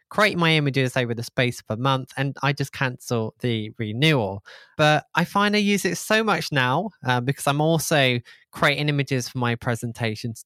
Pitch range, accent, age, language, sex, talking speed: 120-165 Hz, British, 20-39, English, male, 190 wpm